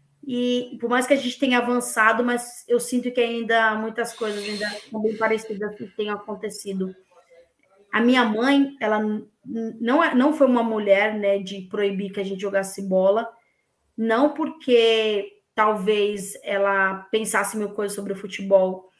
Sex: female